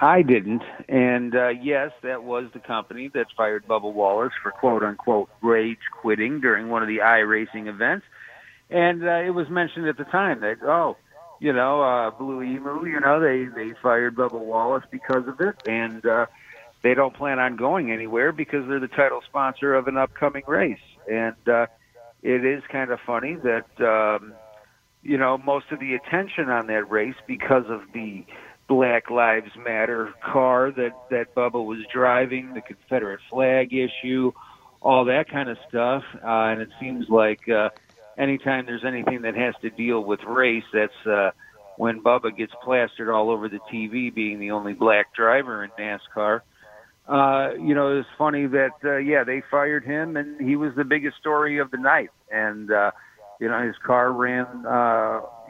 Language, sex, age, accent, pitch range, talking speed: English, male, 50-69, American, 115-140 Hz, 175 wpm